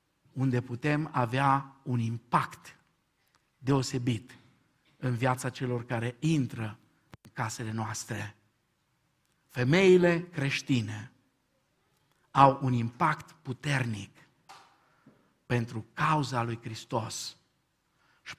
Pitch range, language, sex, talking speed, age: 120-150 Hz, Romanian, male, 80 wpm, 50-69